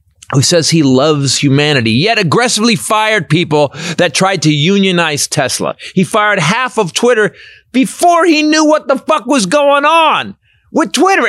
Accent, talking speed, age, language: American, 160 wpm, 30-49, English